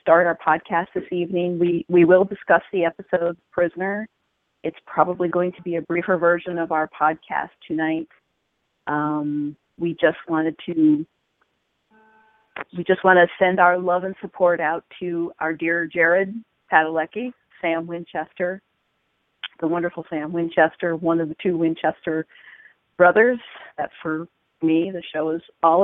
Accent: American